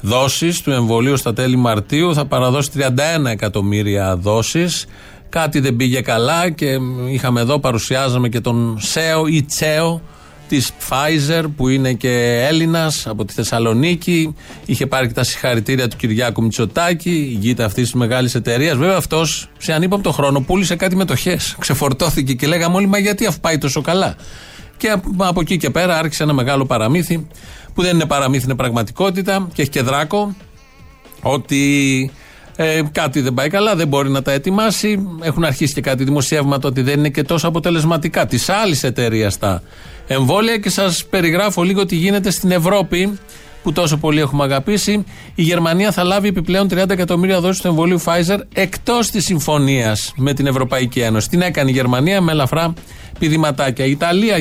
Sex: male